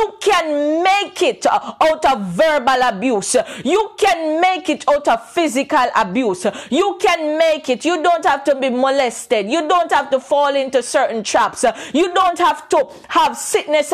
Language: English